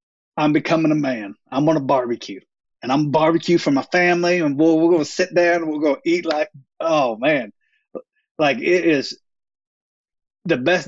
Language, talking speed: English, 195 wpm